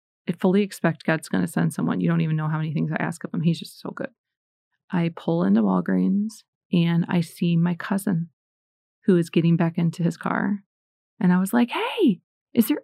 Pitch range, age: 170-205 Hz, 30-49